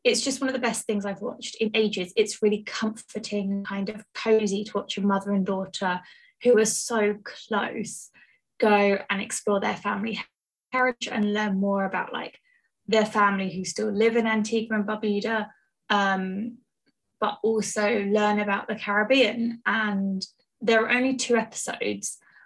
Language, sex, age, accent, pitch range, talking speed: English, female, 20-39, British, 195-225 Hz, 160 wpm